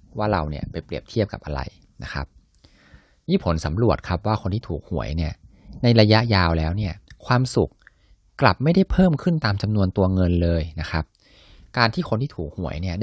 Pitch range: 80-110 Hz